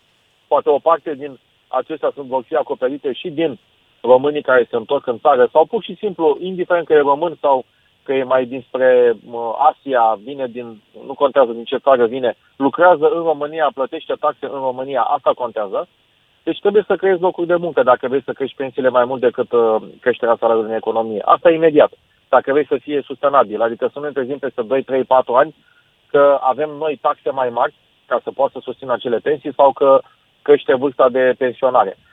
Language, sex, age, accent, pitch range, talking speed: Romanian, male, 30-49, native, 130-175 Hz, 185 wpm